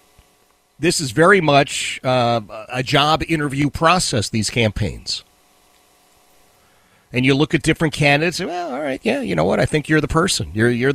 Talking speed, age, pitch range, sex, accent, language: 170 wpm, 40-59, 120-180 Hz, male, American, English